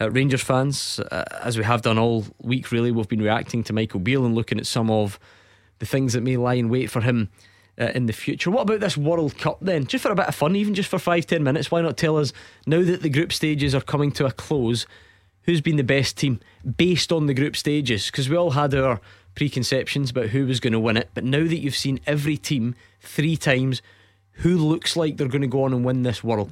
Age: 20-39